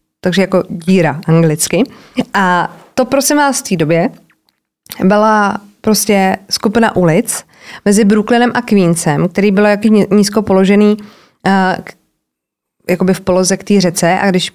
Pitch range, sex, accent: 180-220 Hz, female, native